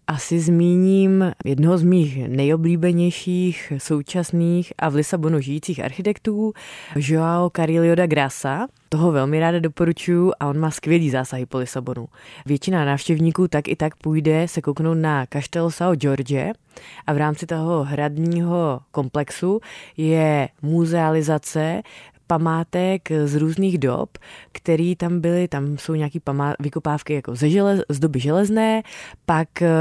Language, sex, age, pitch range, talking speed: Czech, female, 20-39, 145-175 Hz, 130 wpm